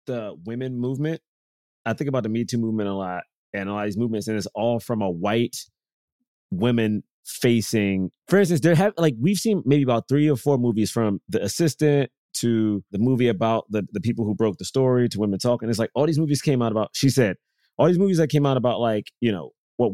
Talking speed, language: 230 wpm, English